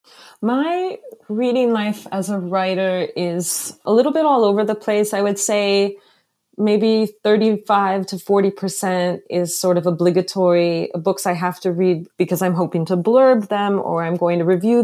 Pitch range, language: 175-220 Hz, English